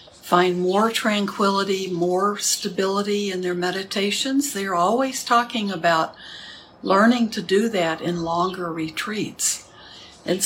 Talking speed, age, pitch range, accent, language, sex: 115 wpm, 60-79, 175-210 Hz, American, English, female